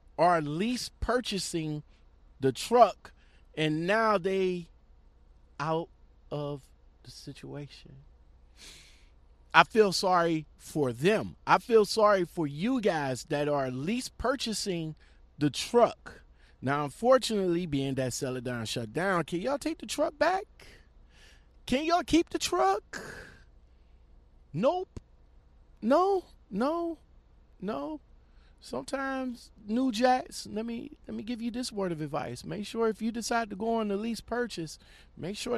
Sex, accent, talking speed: male, American, 135 wpm